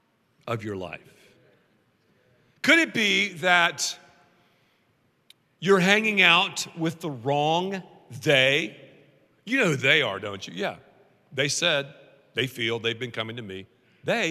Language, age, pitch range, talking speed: English, 50-69, 150-205 Hz, 135 wpm